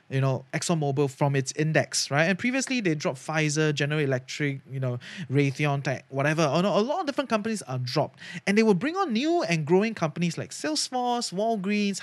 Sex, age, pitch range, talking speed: male, 20-39, 135-205 Hz, 185 wpm